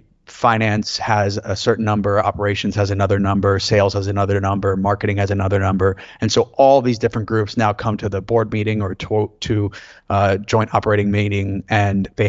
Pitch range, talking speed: 100-115 Hz, 185 wpm